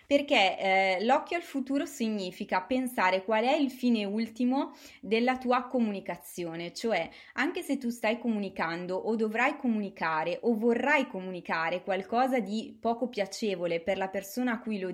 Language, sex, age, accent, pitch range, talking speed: Italian, female, 20-39, native, 195-250 Hz, 150 wpm